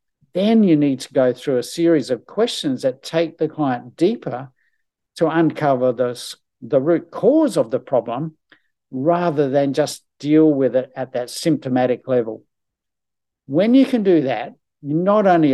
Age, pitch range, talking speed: 60-79, 130-155 Hz, 160 wpm